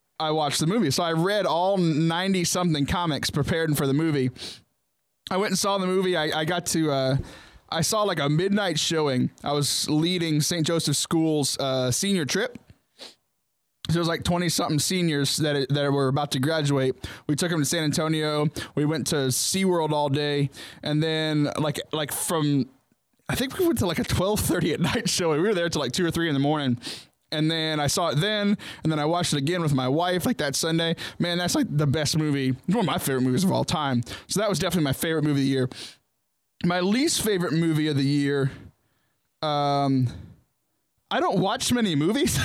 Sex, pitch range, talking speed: male, 140-175 Hz, 210 wpm